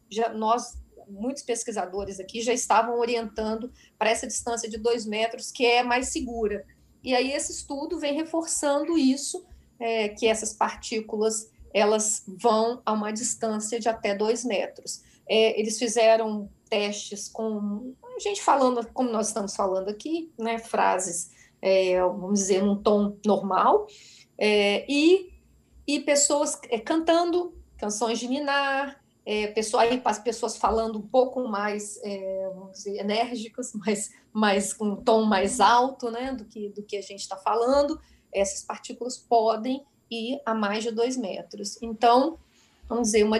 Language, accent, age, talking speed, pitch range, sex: Portuguese, Brazilian, 40-59, 150 wpm, 210-255 Hz, female